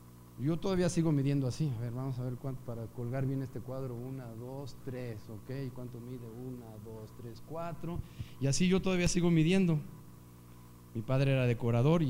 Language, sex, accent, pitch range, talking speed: Spanish, male, Mexican, 120-155 Hz, 180 wpm